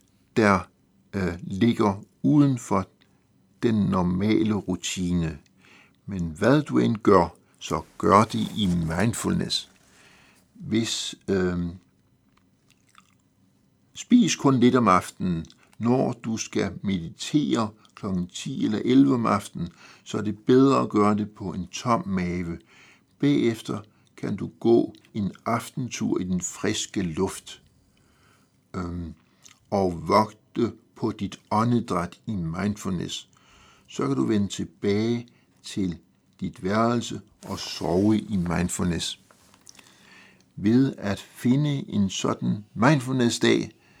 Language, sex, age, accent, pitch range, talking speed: Danish, male, 60-79, native, 90-115 Hz, 110 wpm